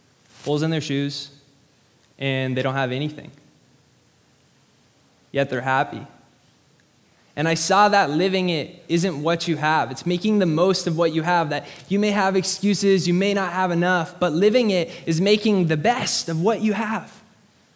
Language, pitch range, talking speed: English, 145-180 Hz, 170 wpm